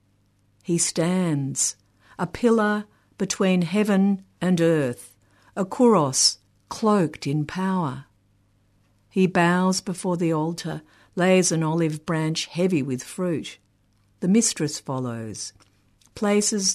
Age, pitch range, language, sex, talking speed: 50-69, 115-185 Hz, English, female, 105 wpm